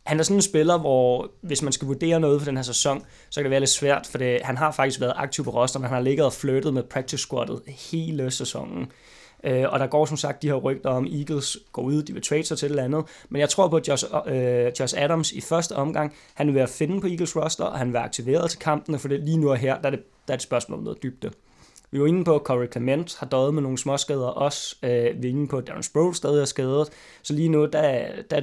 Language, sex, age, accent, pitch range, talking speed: Danish, male, 20-39, native, 130-150 Hz, 285 wpm